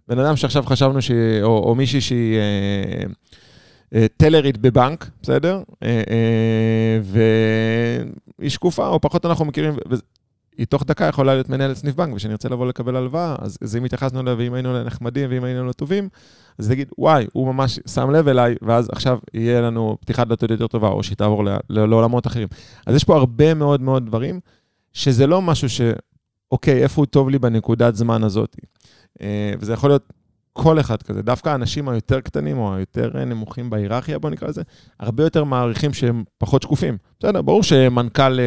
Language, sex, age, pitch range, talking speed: Hebrew, male, 30-49, 110-135 Hz, 180 wpm